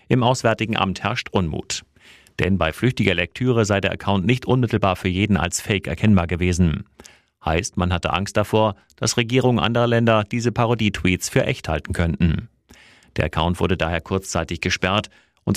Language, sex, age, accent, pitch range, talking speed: German, male, 30-49, German, 90-110 Hz, 160 wpm